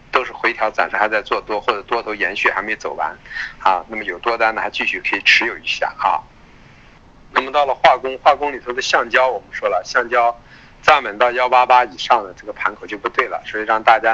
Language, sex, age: Chinese, male, 50-69